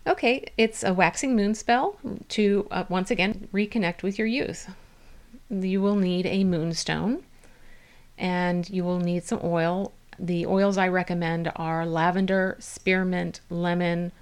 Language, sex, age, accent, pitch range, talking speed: English, female, 30-49, American, 170-195 Hz, 140 wpm